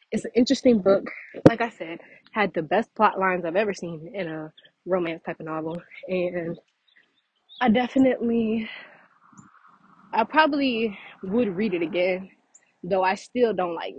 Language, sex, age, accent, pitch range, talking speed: English, female, 20-39, American, 175-225 Hz, 150 wpm